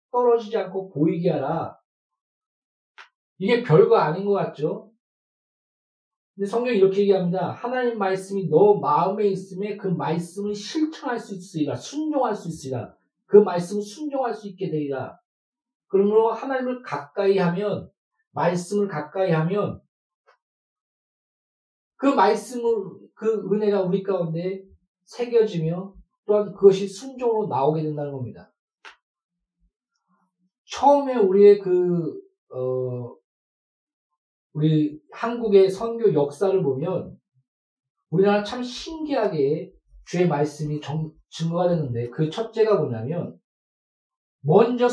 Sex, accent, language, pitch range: male, native, Korean, 165-230 Hz